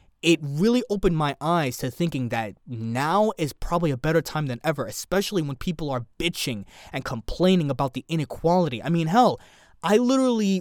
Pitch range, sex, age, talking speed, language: 125-165 Hz, male, 20-39, 175 wpm, English